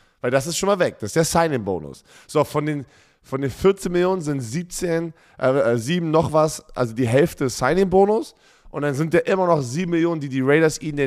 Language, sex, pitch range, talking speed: German, male, 110-145 Hz, 215 wpm